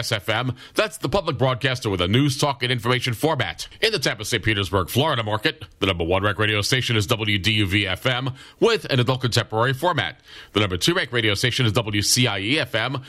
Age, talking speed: 40-59, 185 wpm